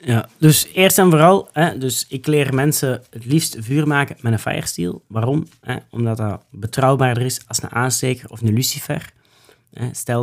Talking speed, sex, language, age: 165 wpm, male, Dutch, 30-49